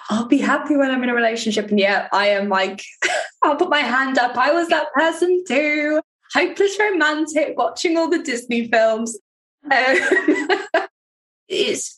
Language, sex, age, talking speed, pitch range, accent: English, female, 10-29, 160 wpm, 225-300 Hz, British